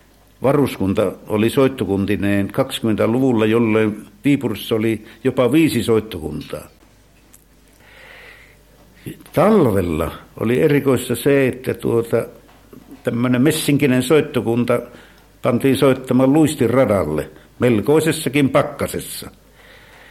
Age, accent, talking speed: 60-79, native, 70 wpm